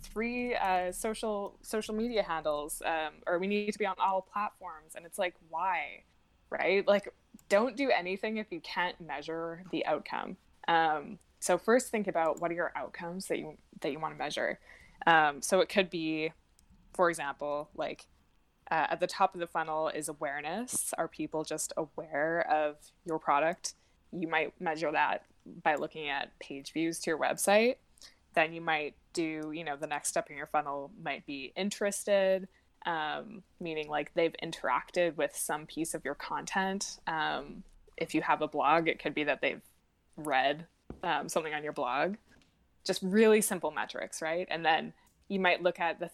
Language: English